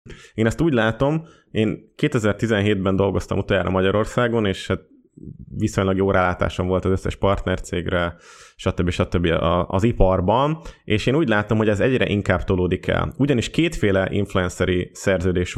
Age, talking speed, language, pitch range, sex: 20-39, 140 wpm, Hungarian, 95-115 Hz, male